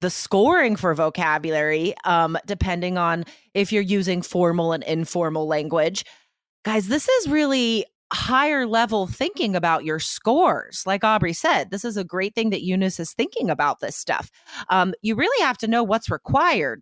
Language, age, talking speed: English, 30-49, 170 wpm